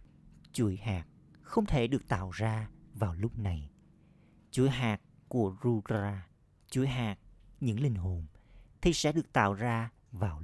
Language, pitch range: Vietnamese, 100-125 Hz